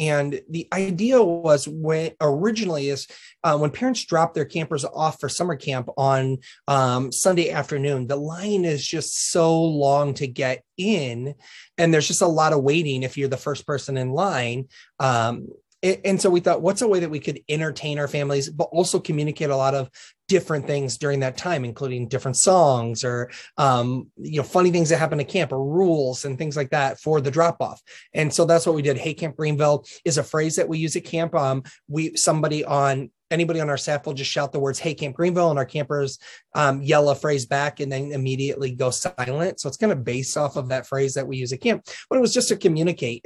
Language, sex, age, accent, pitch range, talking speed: English, male, 30-49, American, 135-170 Hz, 220 wpm